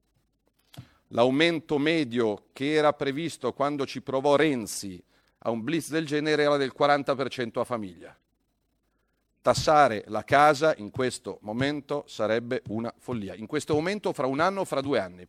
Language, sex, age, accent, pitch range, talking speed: Italian, male, 40-59, native, 120-155 Hz, 150 wpm